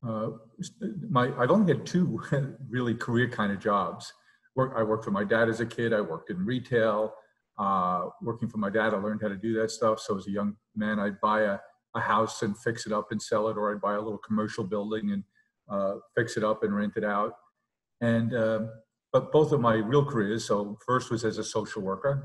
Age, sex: 50-69, male